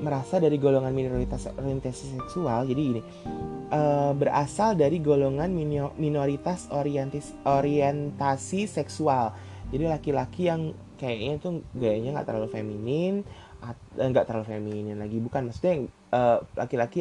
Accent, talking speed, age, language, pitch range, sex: native, 105 wpm, 20-39, Indonesian, 120-165 Hz, male